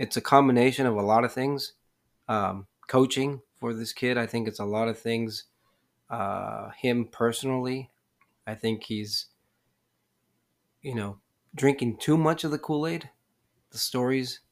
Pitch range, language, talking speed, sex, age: 110-125 Hz, English, 150 wpm, male, 30-49